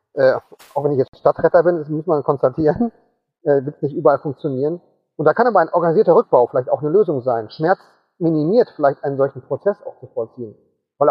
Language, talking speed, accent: German, 205 wpm, German